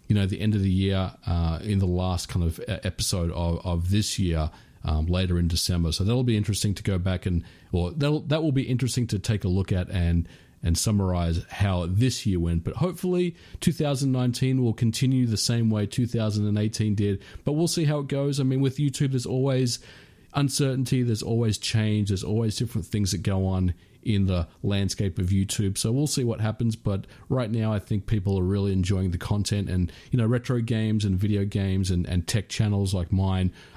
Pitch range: 95-125 Hz